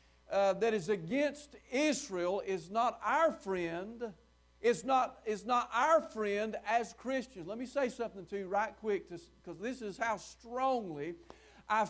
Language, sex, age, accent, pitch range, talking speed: English, male, 50-69, American, 200-260 Hz, 150 wpm